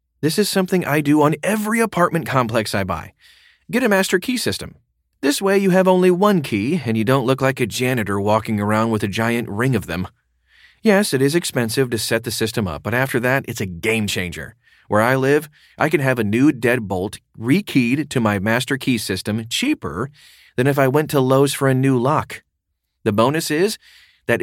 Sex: male